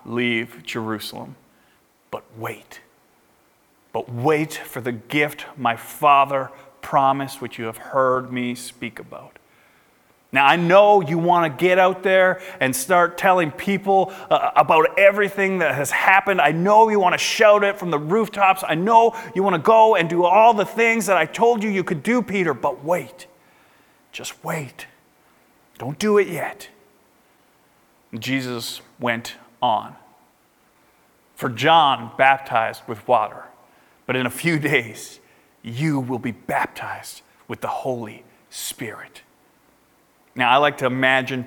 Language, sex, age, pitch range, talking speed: English, male, 30-49, 130-190 Hz, 145 wpm